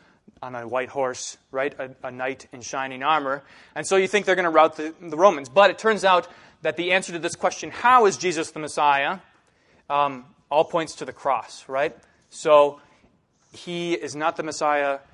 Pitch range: 135-170 Hz